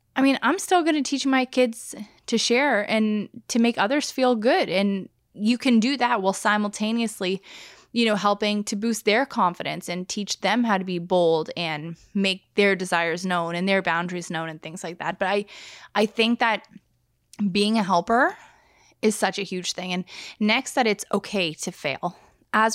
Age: 20-39